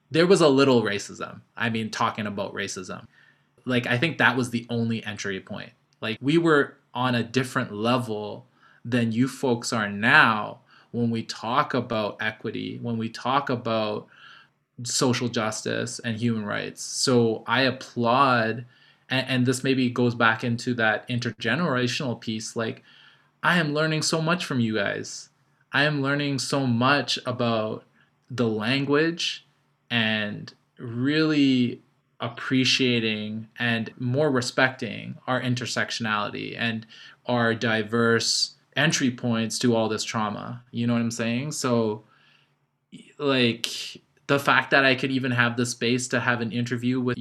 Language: English